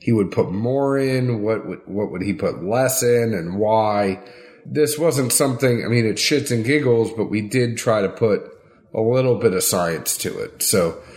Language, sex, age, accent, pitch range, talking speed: English, male, 30-49, American, 105-135 Hz, 200 wpm